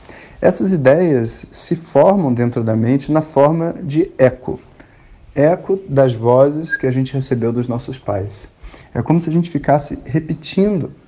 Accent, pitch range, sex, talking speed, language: Brazilian, 120-155 Hz, male, 150 wpm, Portuguese